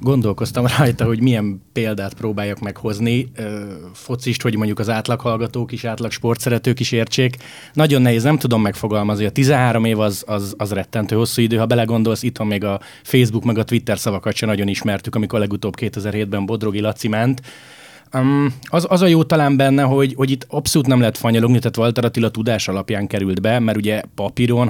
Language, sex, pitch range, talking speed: Hungarian, male, 105-125 Hz, 180 wpm